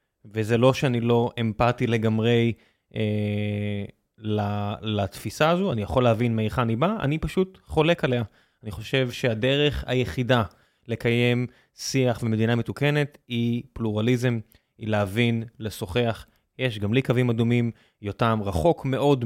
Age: 20-39